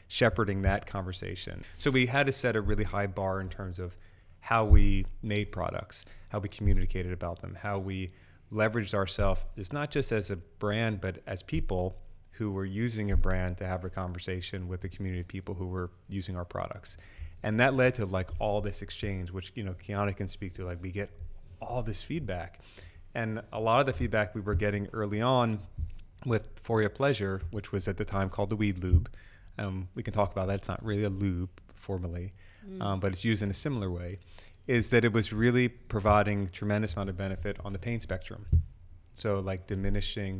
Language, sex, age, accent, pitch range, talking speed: English, male, 30-49, American, 95-105 Hz, 205 wpm